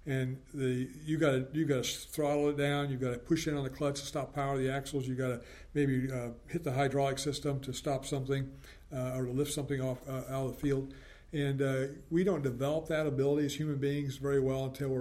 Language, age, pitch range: English, 50-69, 130-145 Hz